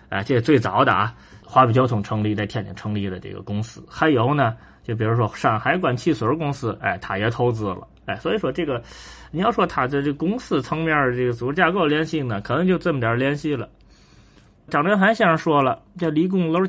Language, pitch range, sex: Chinese, 105-155 Hz, male